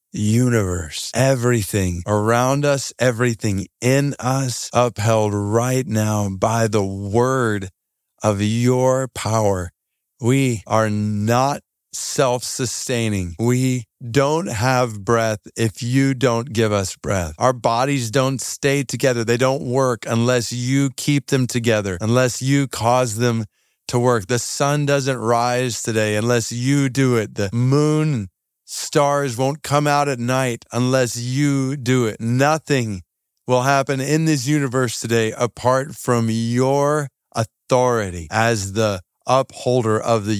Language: English